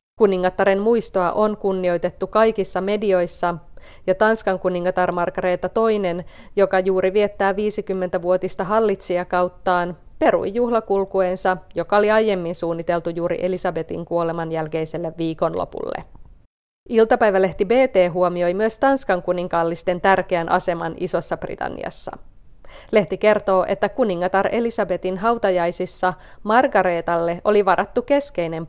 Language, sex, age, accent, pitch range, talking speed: Finnish, female, 30-49, native, 175-210 Hz, 100 wpm